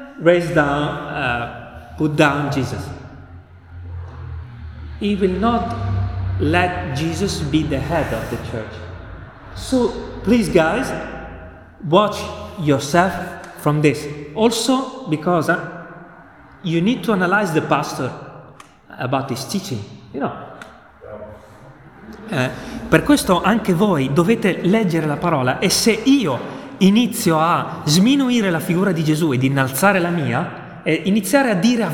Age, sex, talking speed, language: 30-49, male, 125 wpm, Italian